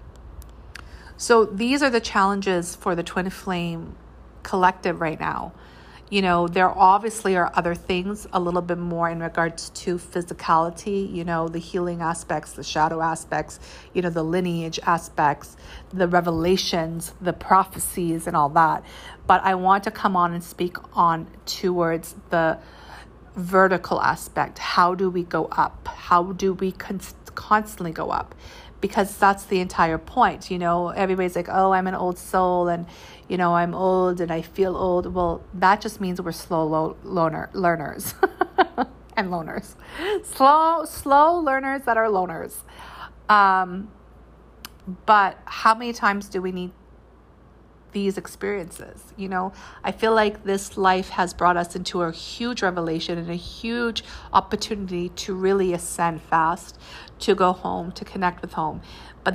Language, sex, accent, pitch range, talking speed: English, female, American, 170-200 Hz, 150 wpm